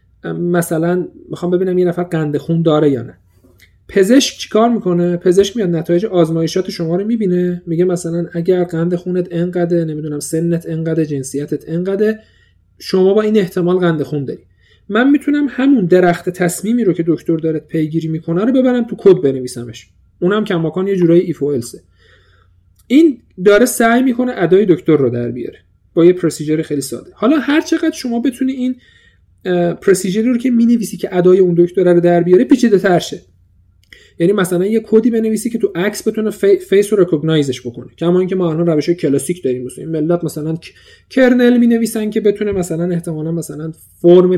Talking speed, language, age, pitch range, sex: 175 wpm, Persian, 40-59, 150-210 Hz, male